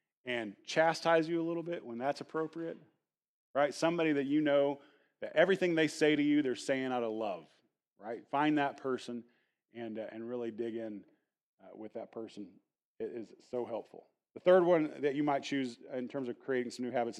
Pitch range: 125-155 Hz